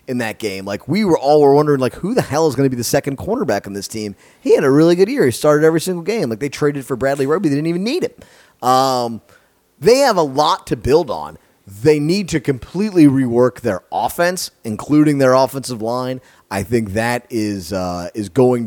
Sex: male